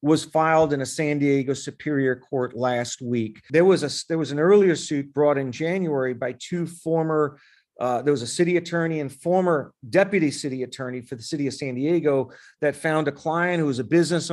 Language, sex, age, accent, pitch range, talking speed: English, male, 40-59, American, 135-165 Hz, 205 wpm